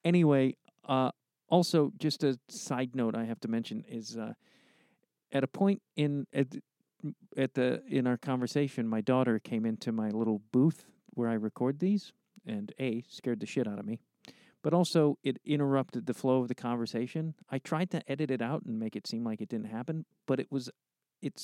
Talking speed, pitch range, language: 195 wpm, 120-165 Hz, English